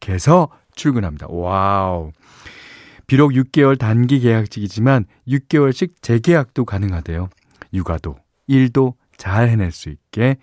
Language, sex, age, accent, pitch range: Korean, male, 40-59, native, 90-135 Hz